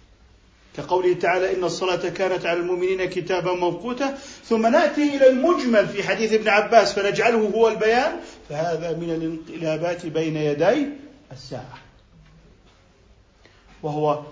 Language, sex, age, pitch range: Arabic, male, 50-69, 155-205 Hz